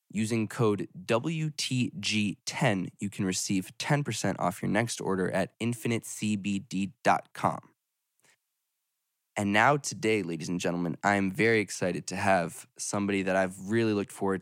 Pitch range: 95-120 Hz